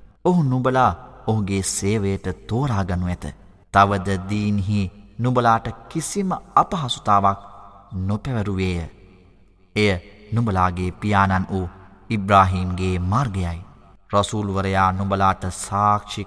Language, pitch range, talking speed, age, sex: Arabic, 95-110 Hz, 120 wpm, 20-39, male